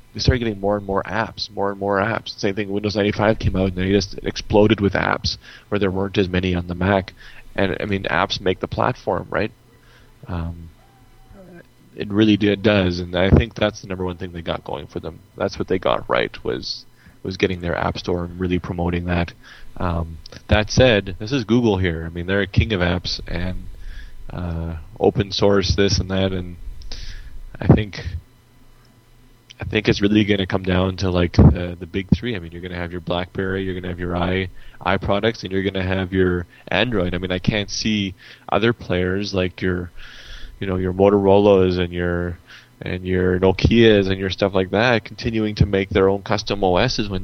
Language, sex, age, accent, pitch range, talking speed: English, male, 30-49, American, 90-105 Hz, 210 wpm